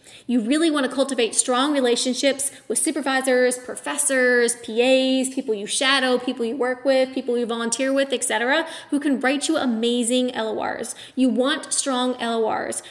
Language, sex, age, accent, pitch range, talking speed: English, female, 20-39, American, 235-270 Hz, 155 wpm